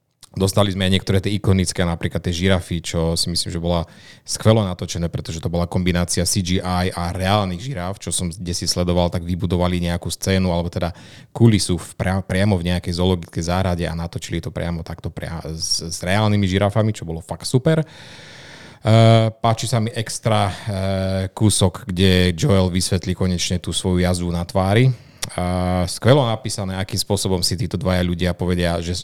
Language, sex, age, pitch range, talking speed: Slovak, male, 30-49, 85-105 Hz, 170 wpm